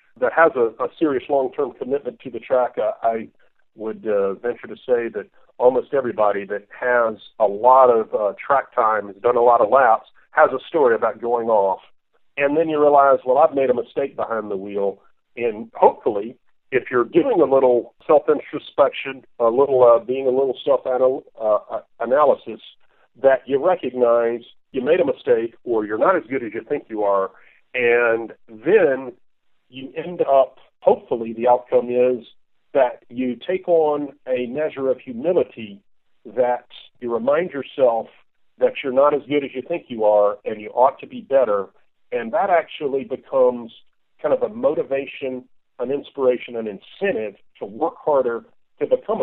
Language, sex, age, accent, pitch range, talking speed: English, male, 50-69, American, 120-180 Hz, 170 wpm